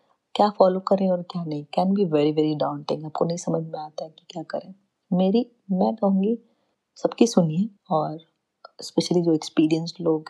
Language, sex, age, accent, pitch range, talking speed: Hindi, female, 30-49, native, 165-210 Hz, 175 wpm